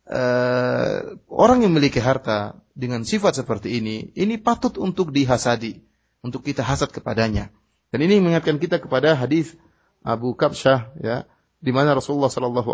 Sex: male